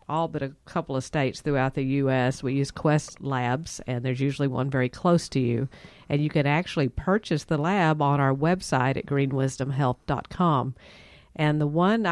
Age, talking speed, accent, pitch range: 50-69, 180 wpm, American, 135-160 Hz